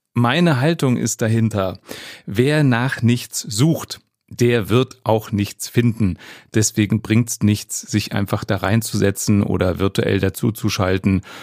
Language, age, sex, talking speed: German, 30-49, male, 120 wpm